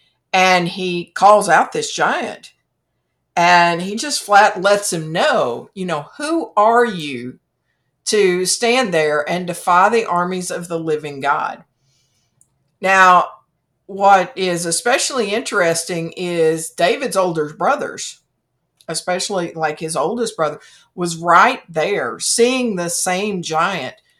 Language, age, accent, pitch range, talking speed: English, 50-69, American, 165-230 Hz, 125 wpm